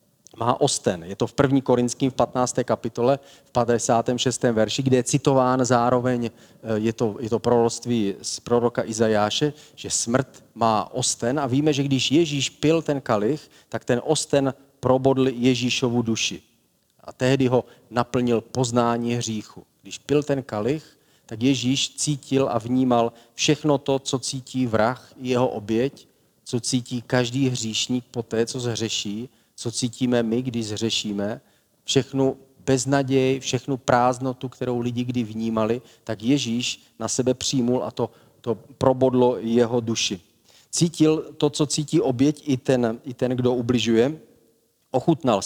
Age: 40-59